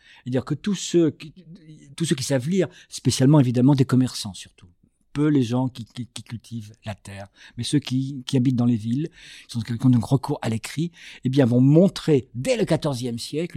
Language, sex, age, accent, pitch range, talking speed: French, male, 50-69, French, 125-155 Hz, 205 wpm